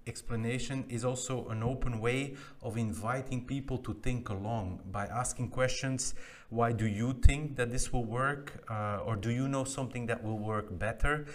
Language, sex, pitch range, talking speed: English, male, 110-125 Hz, 175 wpm